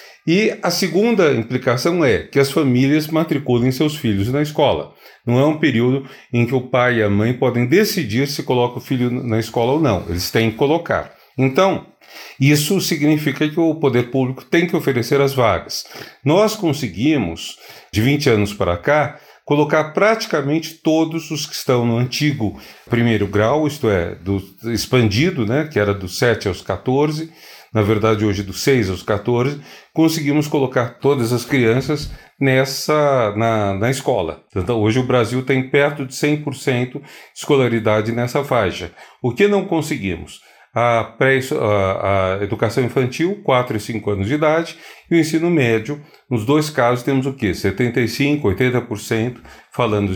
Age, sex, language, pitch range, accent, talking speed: 40-59, male, Portuguese, 115-150 Hz, Brazilian, 160 wpm